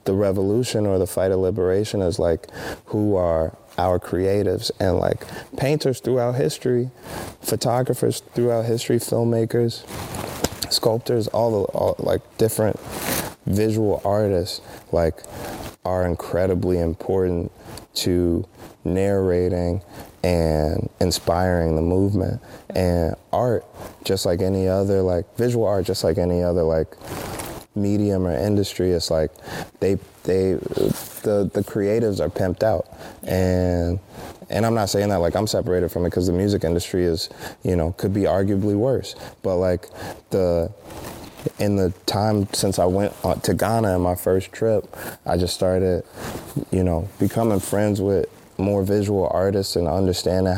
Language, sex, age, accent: English, male, 20-39, American